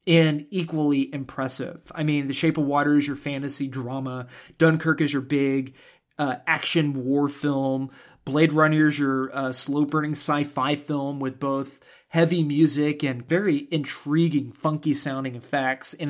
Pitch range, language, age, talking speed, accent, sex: 135-175 Hz, English, 30-49, 150 wpm, American, male